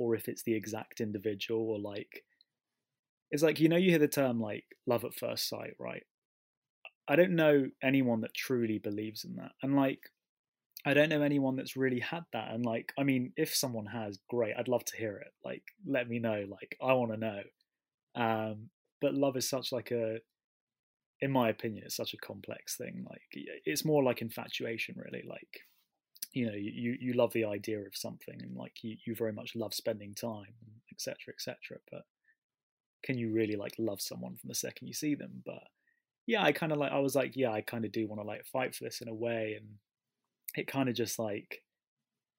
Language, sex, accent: English, male, British